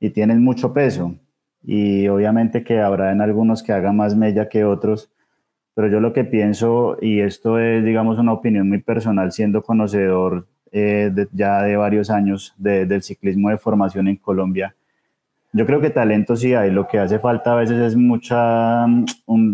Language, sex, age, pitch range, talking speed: Spanish, male, 20-39, 100-115 Hz, 180 wpm